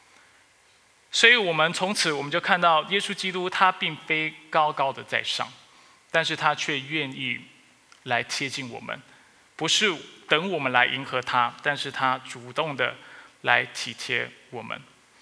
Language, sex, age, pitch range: Chinese, male, 20-39, 125-160 Hz